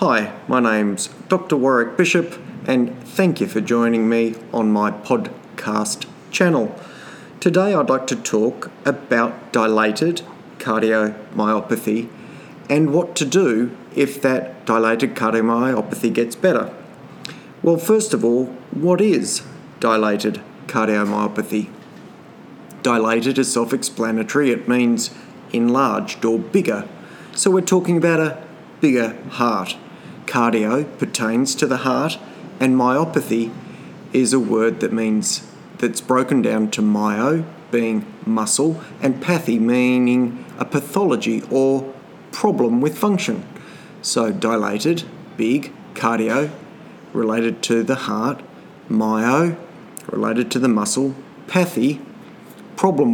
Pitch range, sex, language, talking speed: 115-160 Hz, male, English, 115 wpm